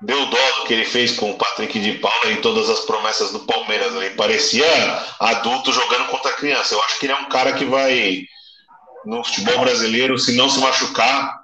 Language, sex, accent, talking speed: Portuguese, male, Brazilian, 210 wpm